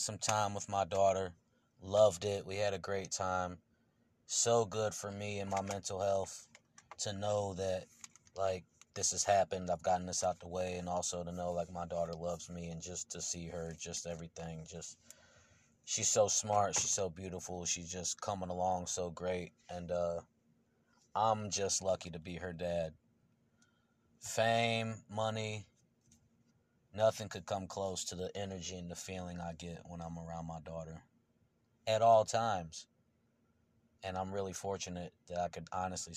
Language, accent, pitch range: English, American, 90-110 Hz